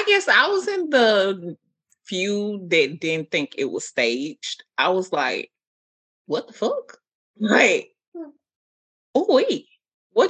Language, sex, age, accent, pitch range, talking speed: English, female, 20-39, American, 175-295 Hz, 140 wpm